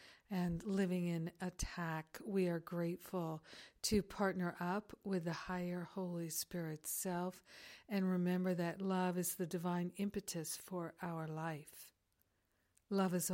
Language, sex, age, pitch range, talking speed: English, female, 50-69, 165-190 Hz, 130 wpm